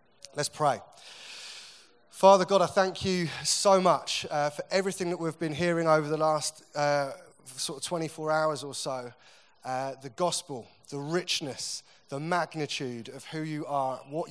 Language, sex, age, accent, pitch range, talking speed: English, male, 20-39, British, 135-155 Hz, 160 wpm